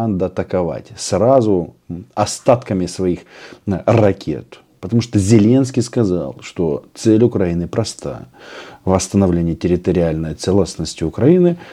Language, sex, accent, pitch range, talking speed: Russian, male, native, 85-115 Hz, 85 wpm